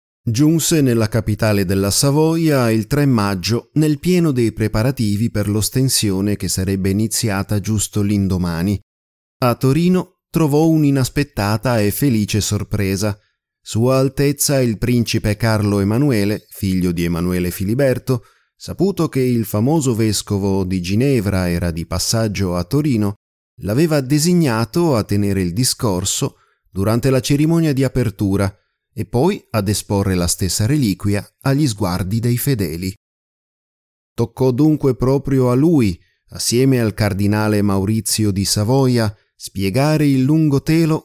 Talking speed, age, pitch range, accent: 125 wpm, 30-49, 100-135 Hz, native